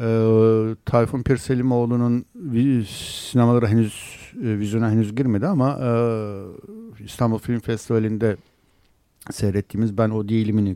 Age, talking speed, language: 60-79, 100 wpm, Turkish